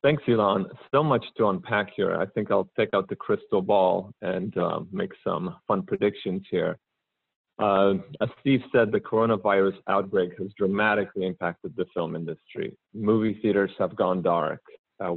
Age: 30-49